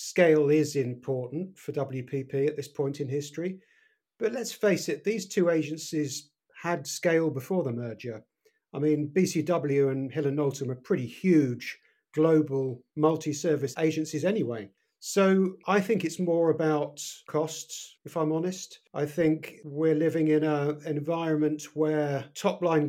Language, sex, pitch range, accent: English, male, 140-165 Hz, British